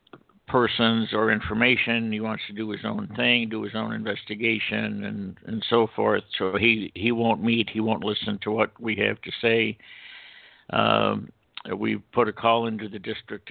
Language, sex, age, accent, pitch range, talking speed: English, male, 60-79, American, 105-115 Hz, 180 wpm